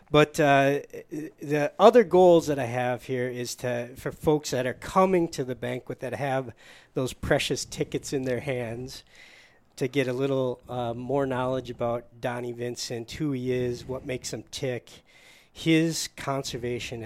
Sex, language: male, English